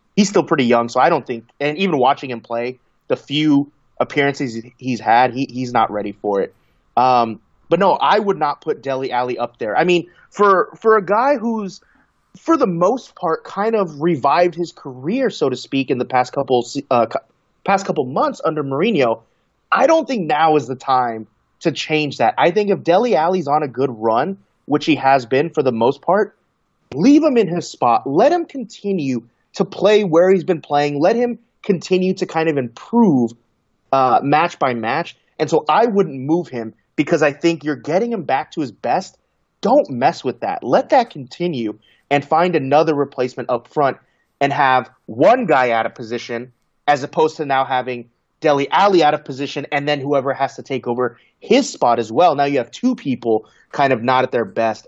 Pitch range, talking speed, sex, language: 125-175 Hz, 205 wpm, male, English